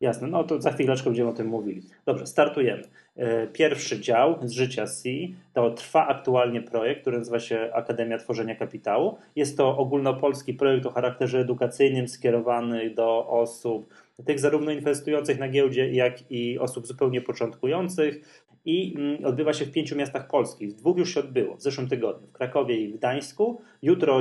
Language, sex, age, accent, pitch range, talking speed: Polish, male, 20-39, native, 120-140 Hz, 165 wpm